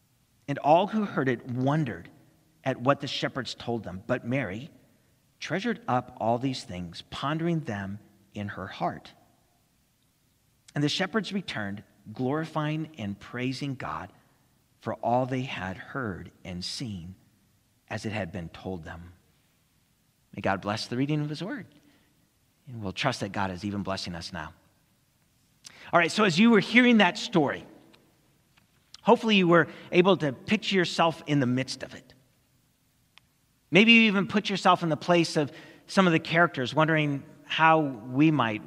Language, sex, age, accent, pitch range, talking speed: English, male, 40-59, American, 105-155 Hz, 155 wpm